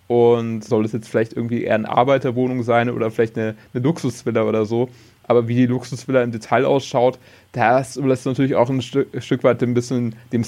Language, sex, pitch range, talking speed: German, male, 115-130 Hz, 205 wpm